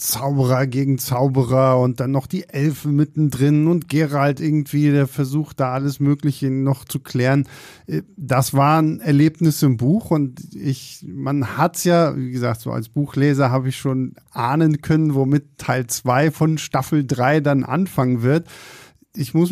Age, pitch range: 50-69, 130-160 Hz